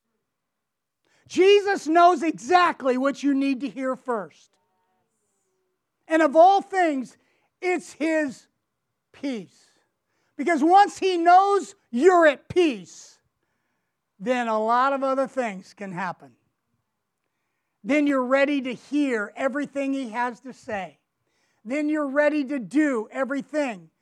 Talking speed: 115 wpm